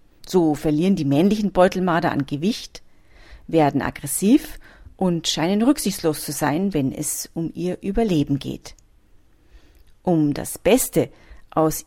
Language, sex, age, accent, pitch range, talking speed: German, female, 40-59, German, 150-195 Hz, 120 wpm